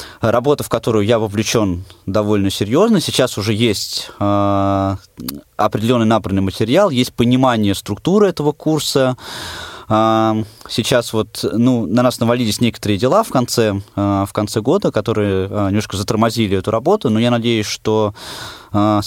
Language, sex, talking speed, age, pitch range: Russian, male, 140 wpm, 20-39, 100-120 Hz